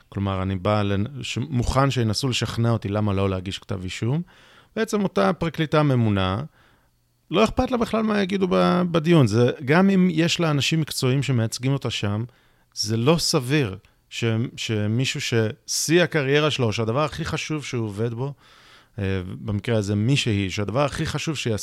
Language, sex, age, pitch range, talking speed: Hebrew, male, 30-49, 105-145 Hz, 155 wpm